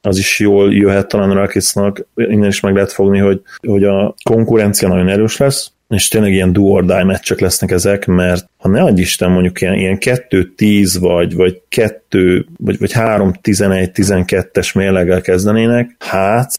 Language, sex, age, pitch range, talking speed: Hungarian, male, 30-49, 90-105 Hz, 160 wpm